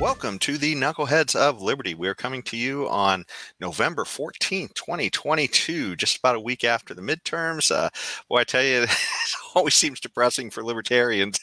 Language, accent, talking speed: English, American, 175 wpm